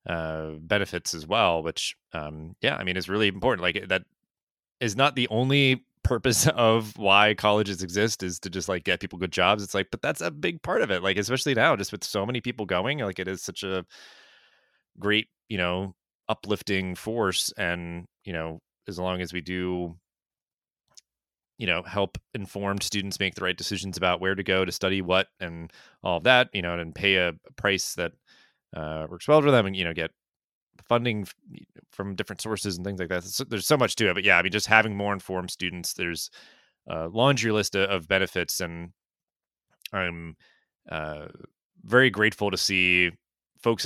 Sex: male